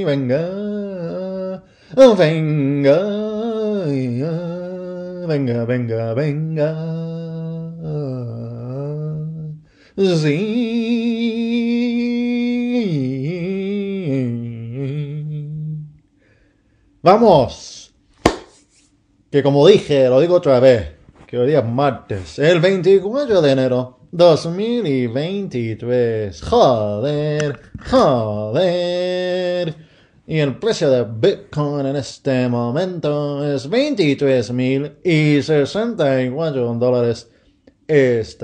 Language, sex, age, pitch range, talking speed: English, male, 30-49, 125-190 Hz, 55 wpm